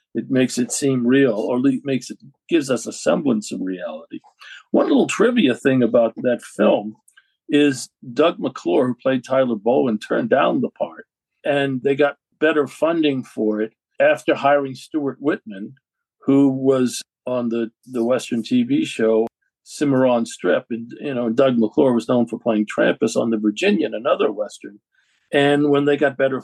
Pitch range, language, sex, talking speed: 125-145 Hz, English, male, 165 wpm